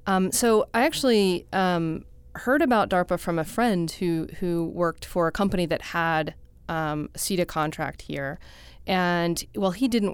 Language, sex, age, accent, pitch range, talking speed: English, female, 30-49, American, 160-195 Hz, 170 wpm